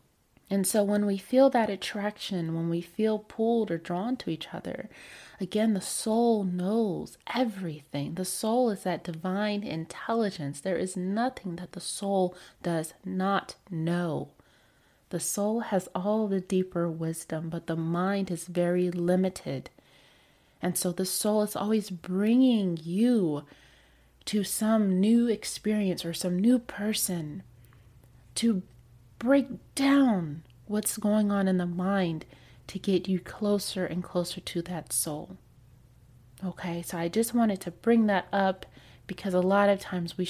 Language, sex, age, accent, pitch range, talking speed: English, female, 30-49, American, 165-210 Hz, 145 wpm